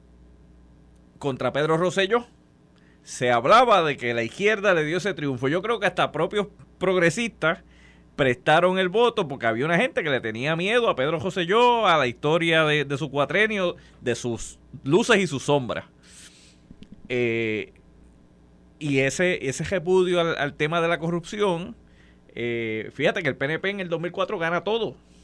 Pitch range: 115-170 Hz